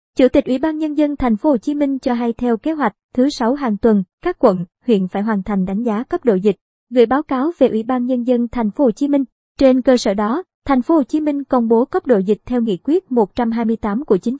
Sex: male